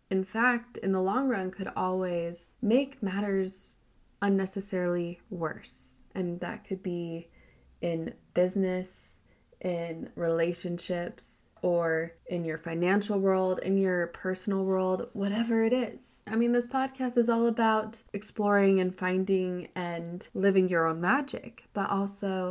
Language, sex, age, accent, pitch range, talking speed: English, female, 20-39, American, 185-220 Hz, 130 wpm